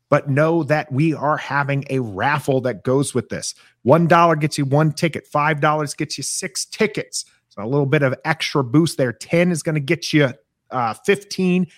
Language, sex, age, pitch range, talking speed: English, male, 30-49, 130-165 Hz, 190 wpm